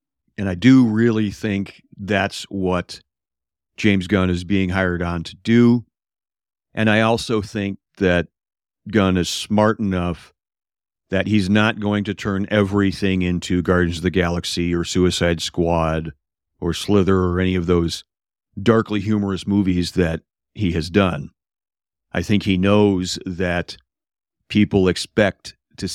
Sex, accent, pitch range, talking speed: male, American, 90-105 Hz, 140 wpm